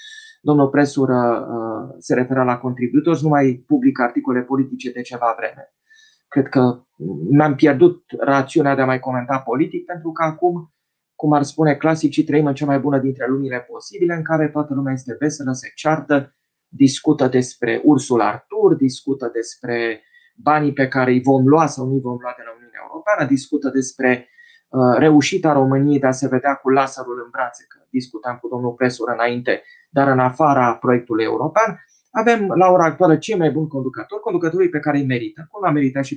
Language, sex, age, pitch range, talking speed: Romanian, male, 20-39, 130-175 Hz, 180 wpm